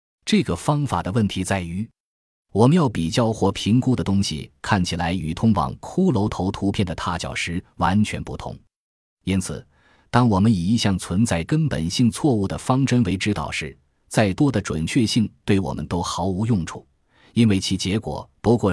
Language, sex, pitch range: Chinese, male, 85-115 Hz